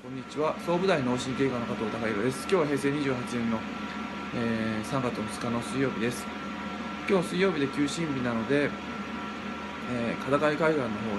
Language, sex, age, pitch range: Japanese, male, 20-39, 120-160 Hz